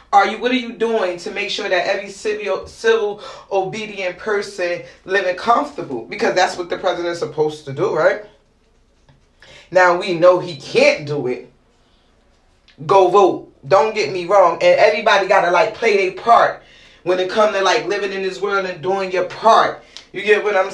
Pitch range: 180-210 Hz